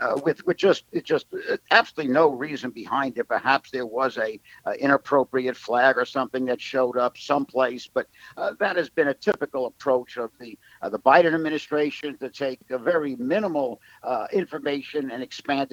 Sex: male